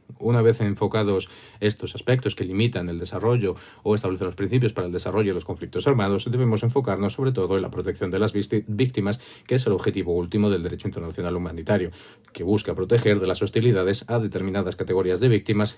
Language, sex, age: Spanish, male, 40-59